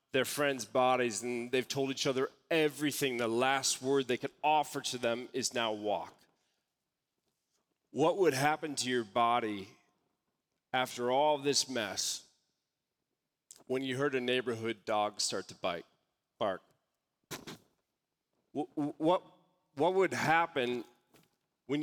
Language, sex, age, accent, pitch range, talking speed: English, male, 40-59, American, 120-145 Hz, 125 wpm